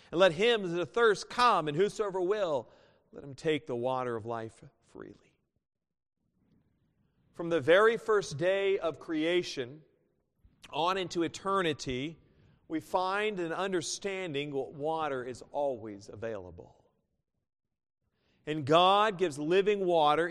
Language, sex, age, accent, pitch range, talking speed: English, male, 40-59, American, 160-215 Hz, 125 wpm